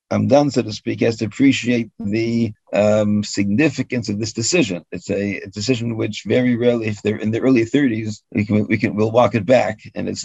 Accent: American